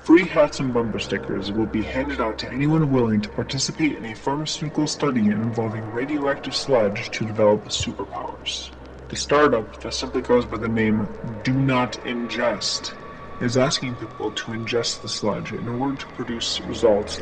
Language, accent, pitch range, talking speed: English, American, 110-135 Hz, 165 wpm